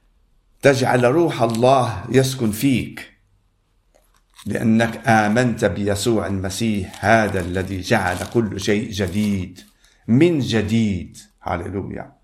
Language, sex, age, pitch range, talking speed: Arabic, male, 50-69, 100-120 Hz, 90 wpm